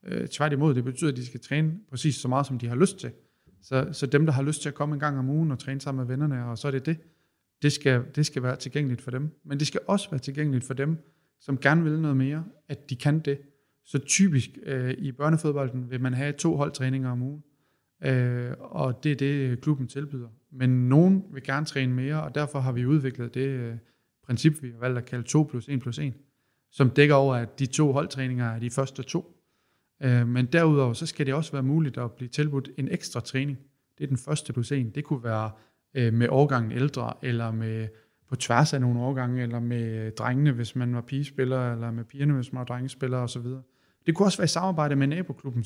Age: 30-49